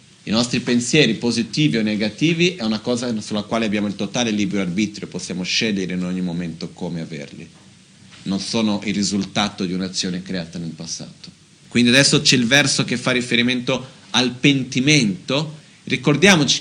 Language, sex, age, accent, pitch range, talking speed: Italian, male, 40-59, native, 115-155 Hz, 155 wpm